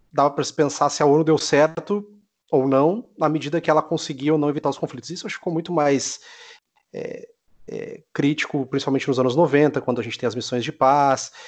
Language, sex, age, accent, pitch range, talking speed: Portuguese, male, 30-49, Brazilian, 130-160 Hz, 225 wpm